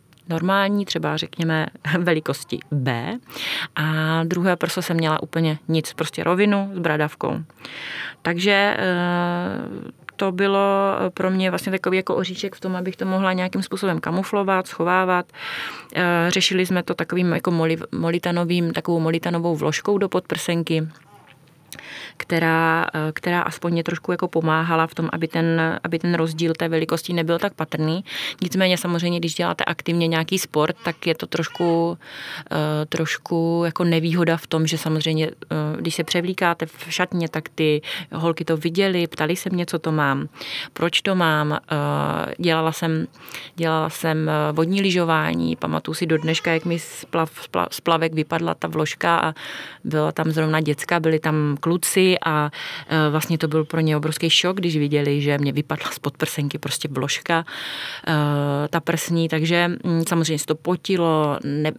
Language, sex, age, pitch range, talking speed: Czech, female, 30-49, 155-180 Hz, 145 wpm